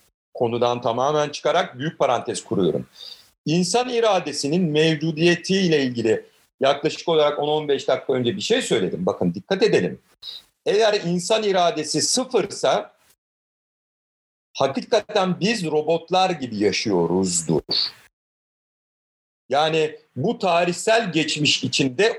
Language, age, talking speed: Turkish, 50-69, 95 wpm